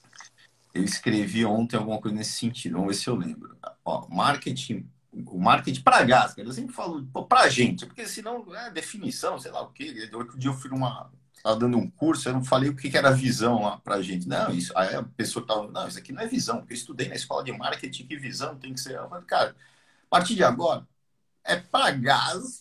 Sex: male